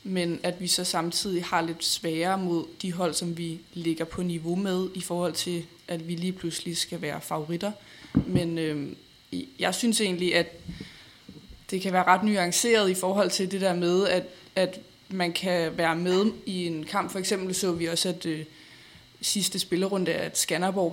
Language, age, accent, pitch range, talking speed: Danish, 20-39, native, 170-185 Hz, 185 wpm